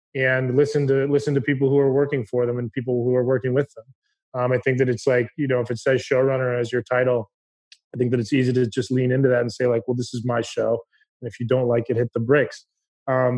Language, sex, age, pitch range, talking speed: English, male, 20-39, 125-145 Hz, 275 wpm